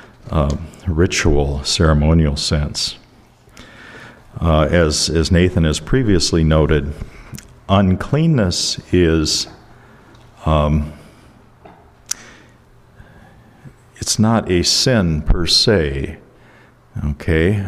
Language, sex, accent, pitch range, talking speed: English, male, American, 80-105 Hz, 70 wpm